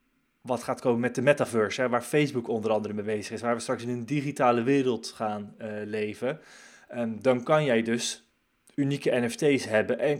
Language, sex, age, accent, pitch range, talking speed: Dutch, male, 20-39, Dutch, 115-145 Hz, 195 wpm